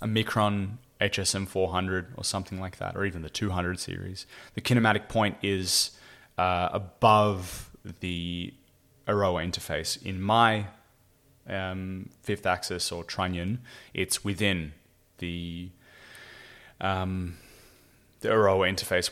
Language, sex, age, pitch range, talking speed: English, male, 20-39, 90-110 Hz, 110 wpm